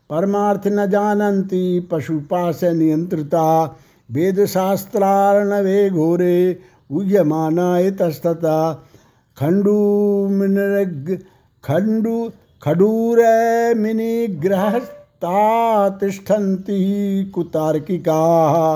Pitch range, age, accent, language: 165-200 Hz, 60-79, native, Hindi